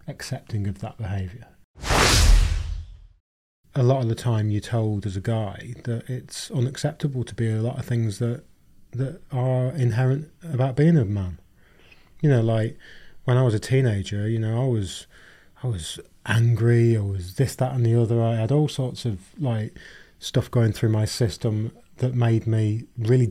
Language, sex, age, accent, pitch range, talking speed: English, male, 30-49, British, 105-130 Hz, 175 wpm